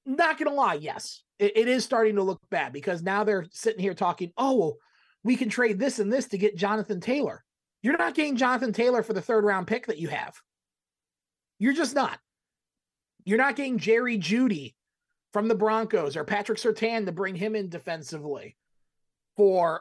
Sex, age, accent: male, 30-49, American